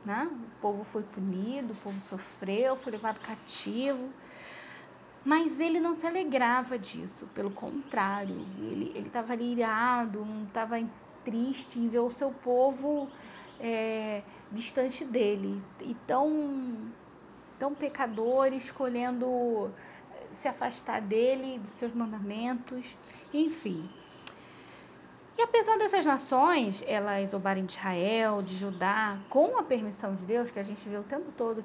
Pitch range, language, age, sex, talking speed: 210-275 Hz, Portuguese, 20-39, female, 130 wpm